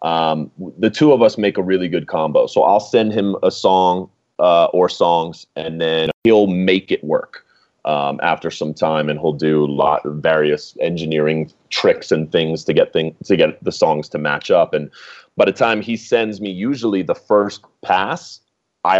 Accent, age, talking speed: American, 30-49, 195 wpm